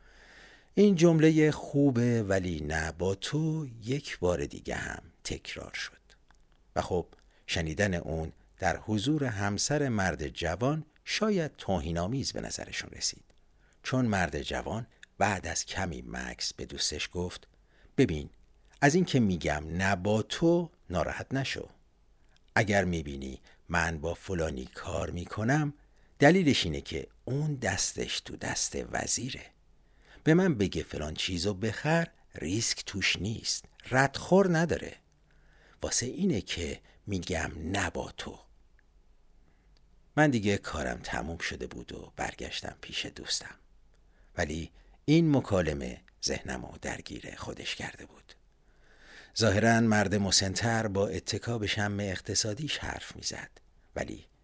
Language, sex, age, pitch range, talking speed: Persian, male, 60-79, 85-130 Hz, 120 wpm